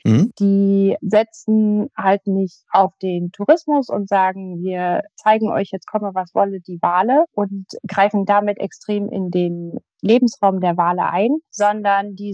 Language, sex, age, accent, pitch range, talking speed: German, female, 30-49, German, 190-220 Hz, 145 wpm